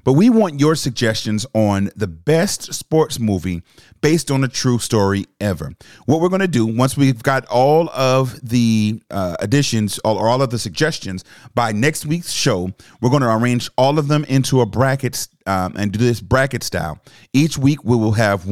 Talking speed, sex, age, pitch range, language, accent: 195 wpm, male, 30-49, 100-130 Hz, English, American